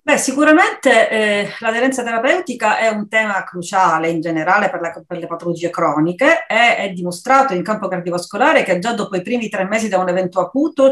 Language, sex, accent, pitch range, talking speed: Italian, female, native, 180-230 Hz, 180 wpm